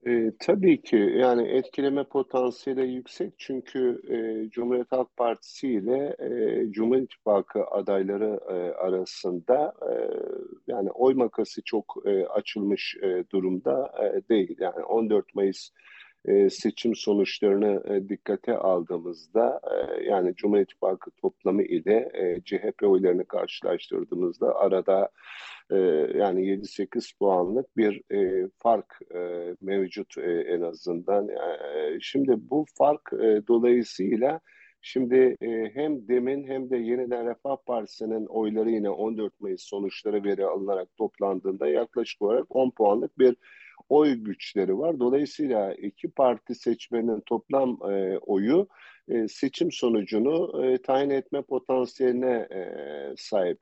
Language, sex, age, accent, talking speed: Turkish, male, 50-69, native, 125 wpm